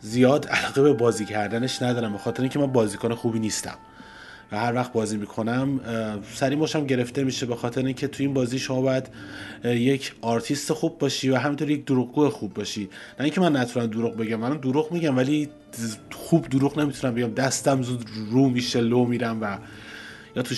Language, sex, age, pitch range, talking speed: Persian, male, 30-49, 115-140 Hz, 180 wpm